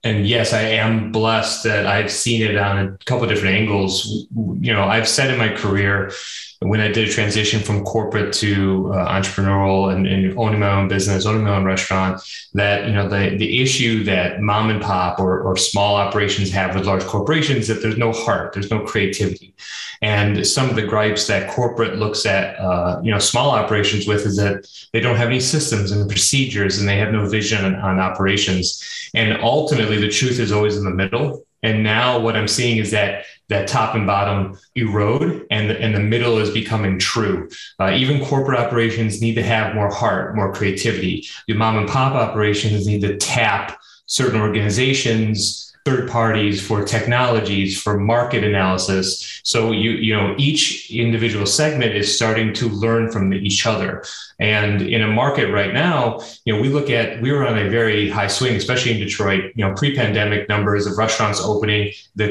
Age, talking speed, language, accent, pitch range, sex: 30-49, 195 wpm, English, American, 100-115 Hz, male